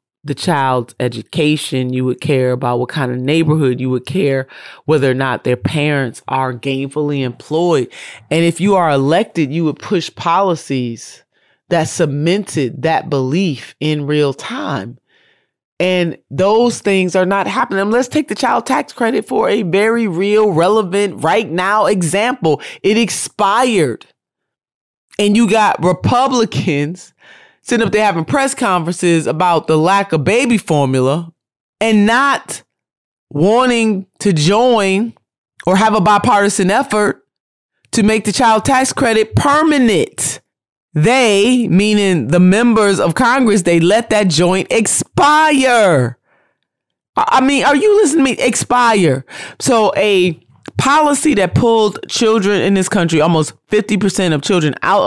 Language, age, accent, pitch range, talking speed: English, 30-49, American, 150-220 Hz, 135 wpm